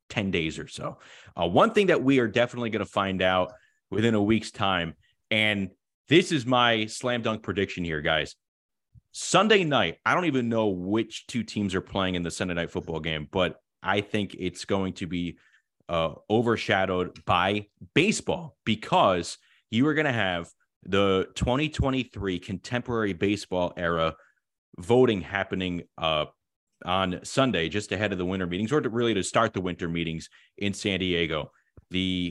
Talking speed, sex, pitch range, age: 165 wpm, male, 90-110 Hz, 30-49